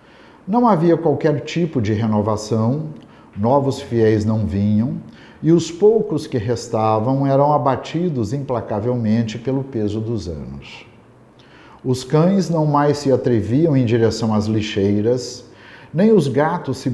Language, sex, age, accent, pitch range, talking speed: Portuguese, male, 50-69, Brazilian, 110-145 Hz, 130 wpm